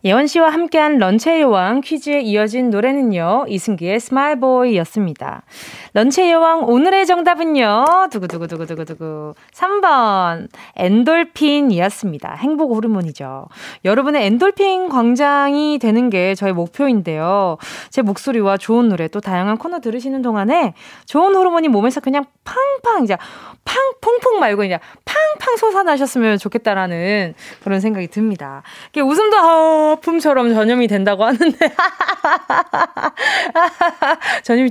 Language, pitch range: Korean, 210-320 Hz